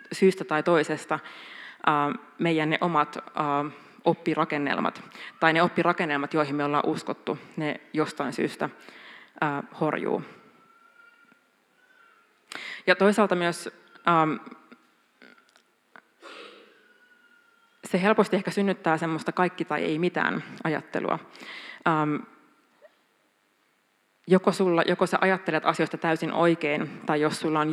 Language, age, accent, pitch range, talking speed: Finnish, 20-39, native, 150-185 Hz, 95 wpm